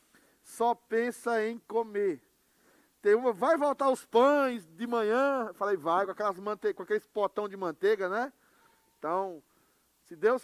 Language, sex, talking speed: Portuguese, male, 125 wpm